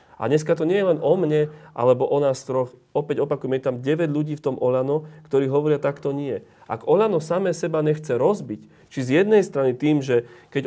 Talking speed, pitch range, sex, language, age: 215 wpm, 115-145 Hz, male, Slovak, 30-49